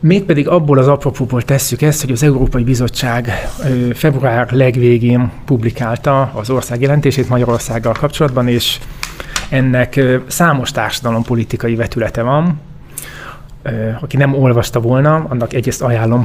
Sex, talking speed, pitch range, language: male, 115 wpm, 120-150 Hz, Hungarian